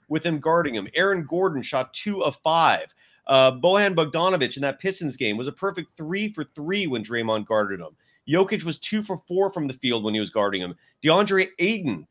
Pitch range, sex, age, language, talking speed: 140-190 Hz, male, 30-49, English, 210 wpm